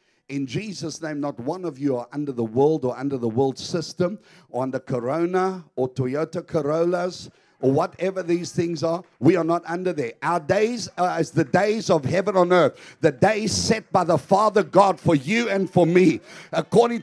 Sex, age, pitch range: male, 50-69, 175-235 Hz